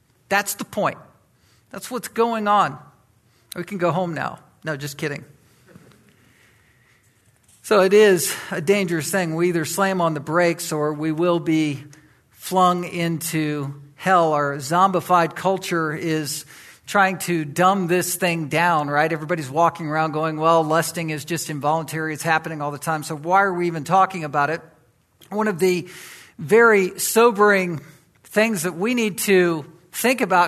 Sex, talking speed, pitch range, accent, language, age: male, 155 wpm, 155-205 Hz, American, English, 50-69